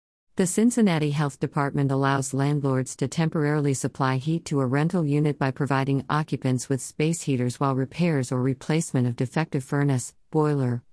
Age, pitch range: 50-69, 130-155 Hz